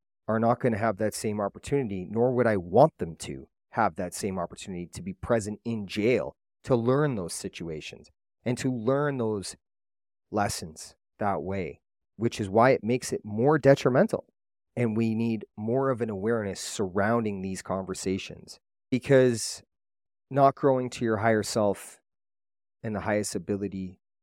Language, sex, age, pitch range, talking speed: English, male, 30-49, 100-125 Hz, 155 wpm